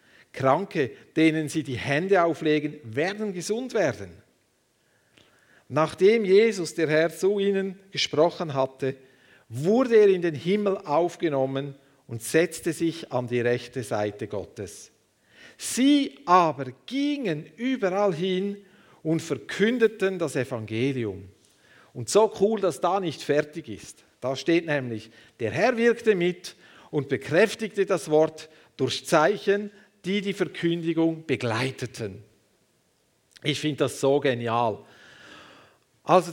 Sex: male